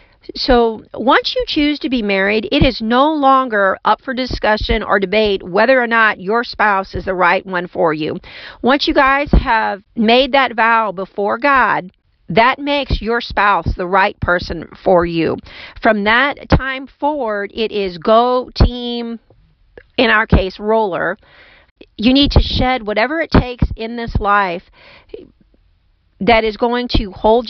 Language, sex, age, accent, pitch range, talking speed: English, female, 40-59, American, 195-240 Hz, 155 wpm